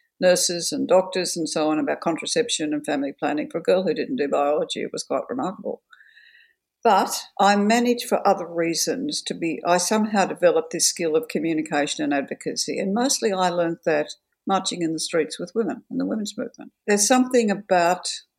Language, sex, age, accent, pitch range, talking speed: English, female, 60-79, Australian, 165-245 Hz, 185 wpm